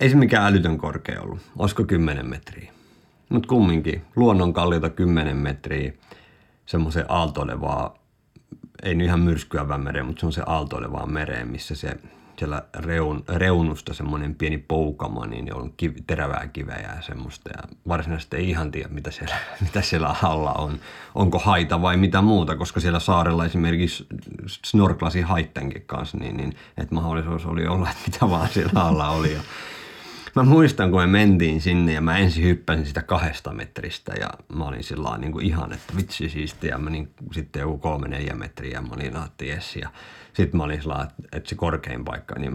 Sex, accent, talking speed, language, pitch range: male, native, 170 wpm, Finnish, 75-90 Hz